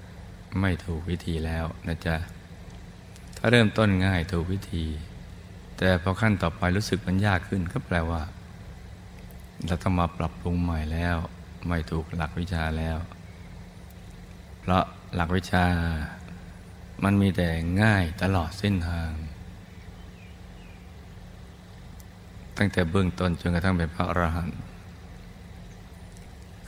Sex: male